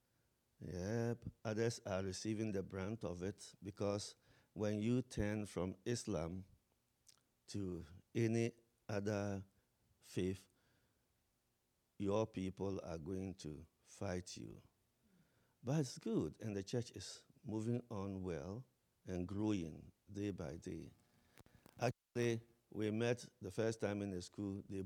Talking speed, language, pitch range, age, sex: 120 wpm, English, 90-115 Hz, 50-69, male